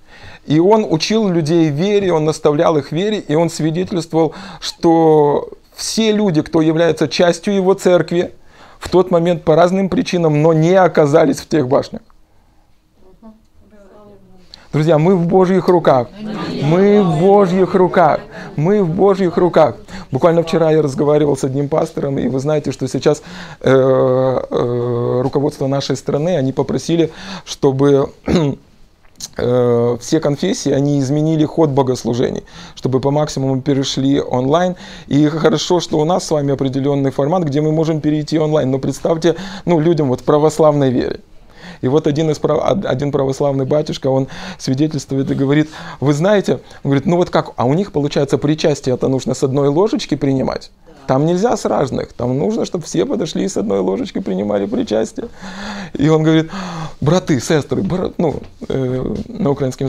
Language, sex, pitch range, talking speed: Russian, male, 140-180 Hz, 155 wpm